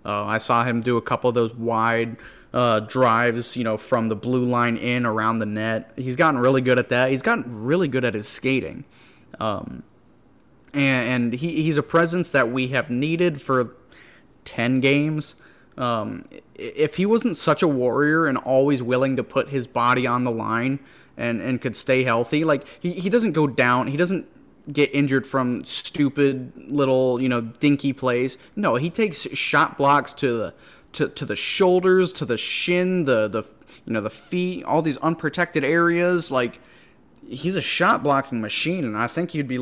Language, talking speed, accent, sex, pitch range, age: English, 185 wpm, American, male, 120-145 Hz, 30-49